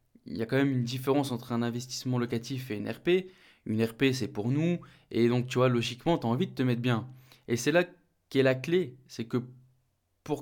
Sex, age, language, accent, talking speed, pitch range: male, 20-39, French, French, 230 wpm, 120-145 Hz